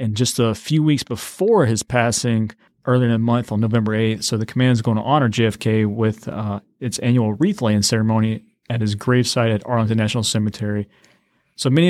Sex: male